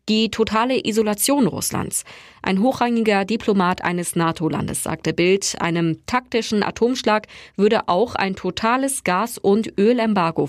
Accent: German